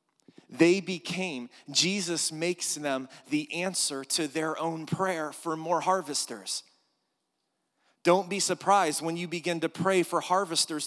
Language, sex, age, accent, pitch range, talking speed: English, male, 30-49, American, 130-170 Hz, 135 wpm